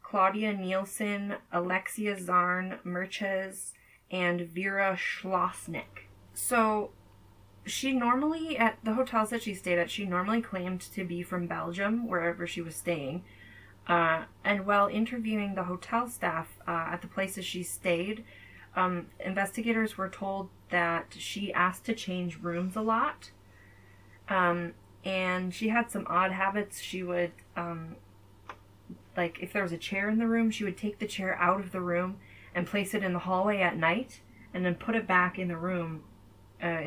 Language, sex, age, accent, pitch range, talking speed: English, female, 20-39, American, 175-205 Hz, 160 wpm